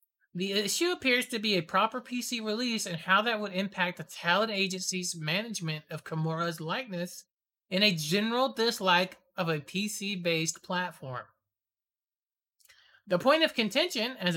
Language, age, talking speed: English, 20-39, 140 wpm